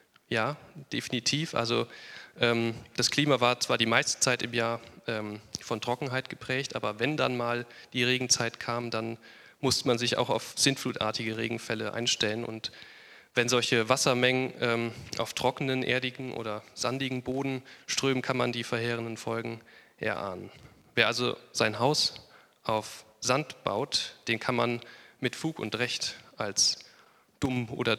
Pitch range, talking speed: 115-130 Hz, 145 wpm